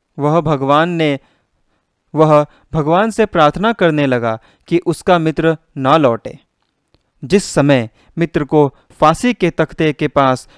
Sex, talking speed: male, 130 wpm